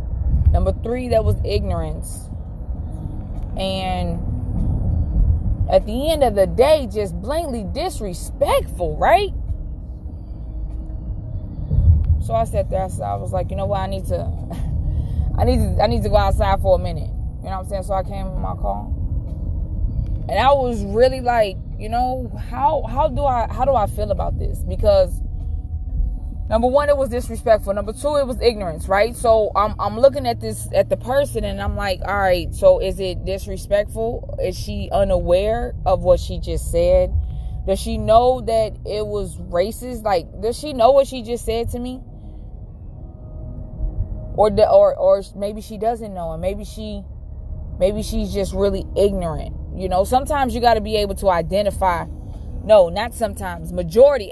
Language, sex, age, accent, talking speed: English, female, 20-39, American, 165 wpm